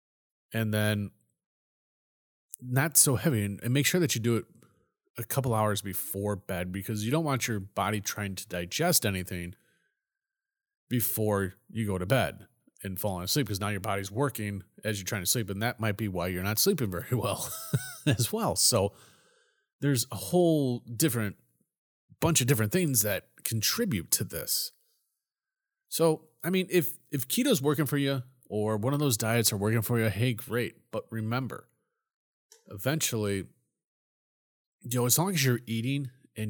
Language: English